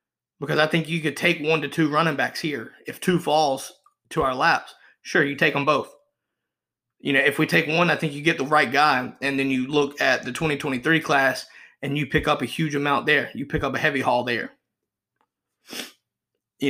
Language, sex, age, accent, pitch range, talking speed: English, male, 30-49, American, 140-165 Hz, 215 wpm